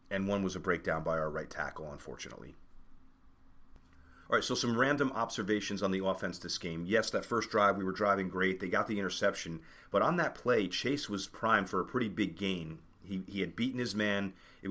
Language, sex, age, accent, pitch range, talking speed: English, male, 30-49, American, 85-105 Hz, 210 wpm